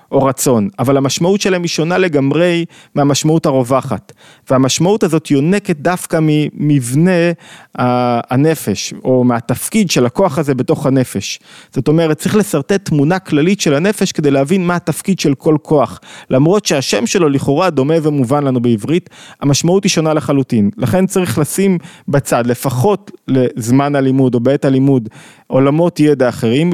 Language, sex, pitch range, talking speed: Hebrew, male, 125-165 Hz, 140 wpm